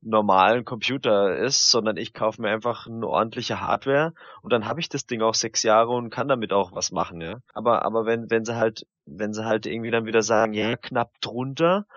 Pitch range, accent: 105-125 Hz, German